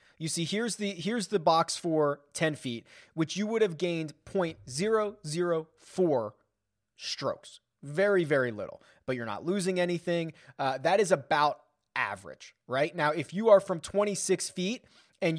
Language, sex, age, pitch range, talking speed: English, male, 30-49, 145-195 Hz, 150 wpm